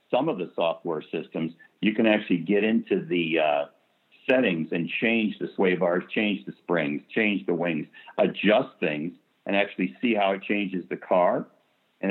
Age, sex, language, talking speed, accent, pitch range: 60-79, male, English, 175 wpm, American, 95-115 Hz